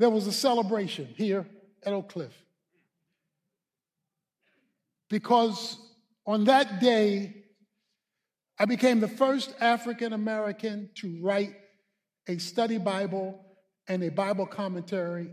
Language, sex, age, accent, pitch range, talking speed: English, male, 50-69, American, 185-235 Hz, 105 wpm